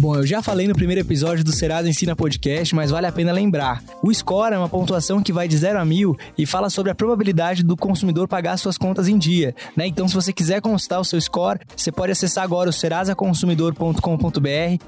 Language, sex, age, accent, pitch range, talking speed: Portuguese, male, 20-39, Brazilian, 165-195 Hz, 220 wpm